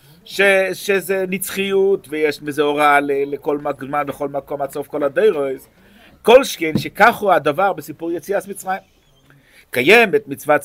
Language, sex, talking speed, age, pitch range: Hebrew, male, 135 wpm, 50-69, 145-205 Hz